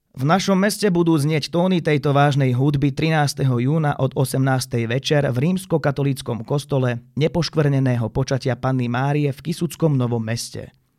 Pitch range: 125-155 Hz